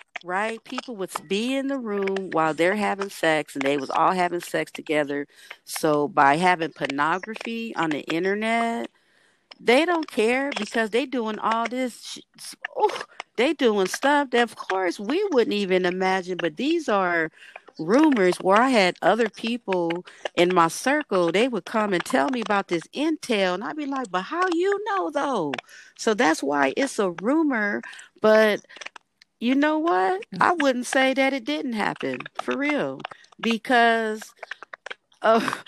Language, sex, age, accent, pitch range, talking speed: English, female, 50-69, American, 175-255 Hz, 160 wpm